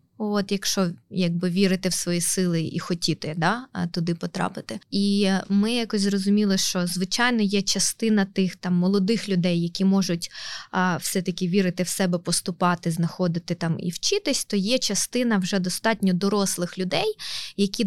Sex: female